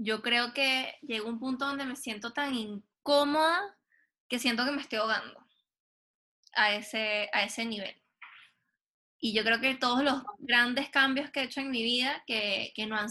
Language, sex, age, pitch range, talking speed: Spanish, female, 10-29, 215-265 Hz, 190 wpm